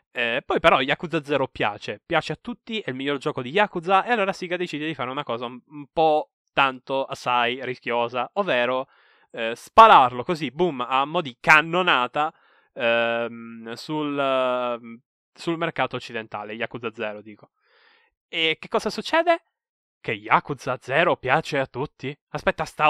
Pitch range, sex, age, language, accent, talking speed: 125-185 Hz, male, 20-39, Italian, native, 150 wpm